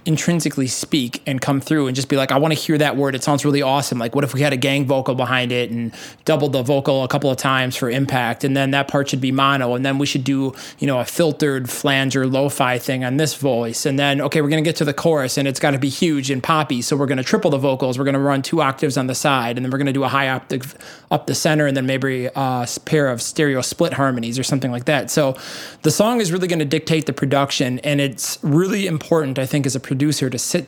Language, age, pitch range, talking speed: English, 20-39, 135-150 Hz, 275 wpm